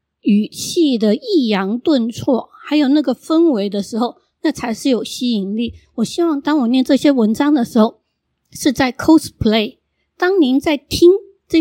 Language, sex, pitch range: Chinese, female, 225-295 Hz